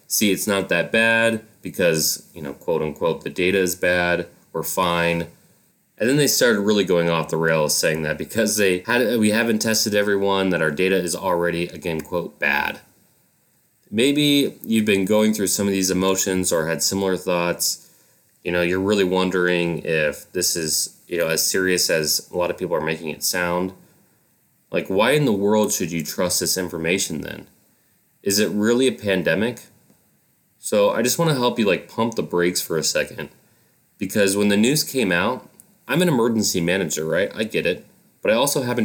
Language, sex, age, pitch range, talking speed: English, male, 20-39, 85-110 Hz, 190 wpm